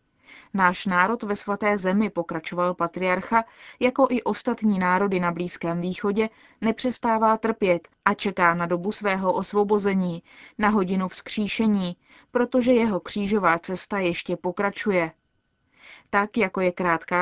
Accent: native